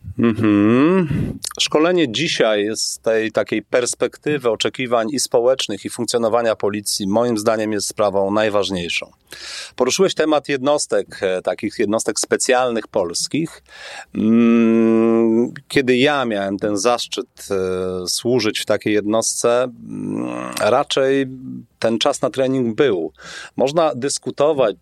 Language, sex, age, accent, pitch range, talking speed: Polish, male, 40-59, native, 105-135 Hz, 100 wpm